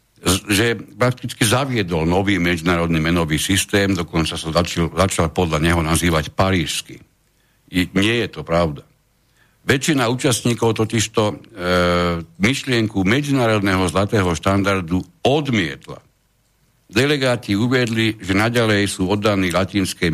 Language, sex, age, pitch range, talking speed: Slovak, male, 60-79, 85-115 Hz, 110 wpm